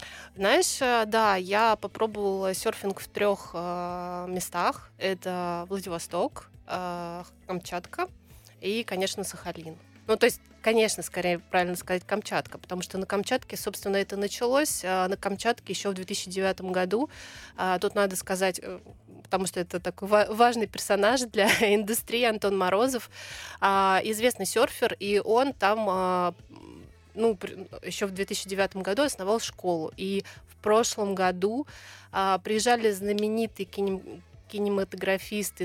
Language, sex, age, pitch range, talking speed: Russian, female, 20-39, 185-210 Hz, 130 wpm